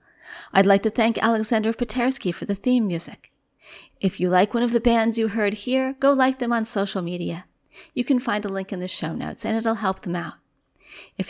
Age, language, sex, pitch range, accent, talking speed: 40-59, English, female, 185-245 Hz, American, 220 wpm